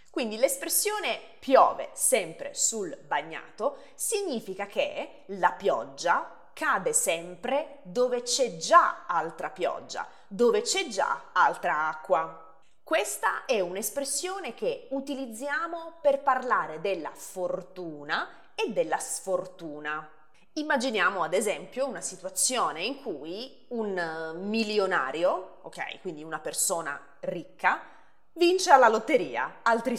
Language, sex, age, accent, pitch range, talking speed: Italian, female, 20-39, native, 185-295 Hz, 105 wpm